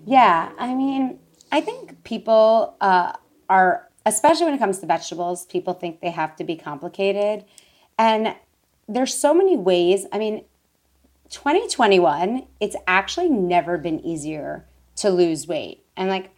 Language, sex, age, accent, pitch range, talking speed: English, female, 30-49, American, 175-220 Hz, 145 wpm